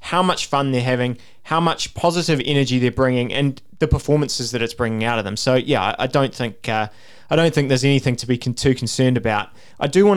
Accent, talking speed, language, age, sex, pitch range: Australian, 235 wpm, English, 20-39, male, 130-160 Hz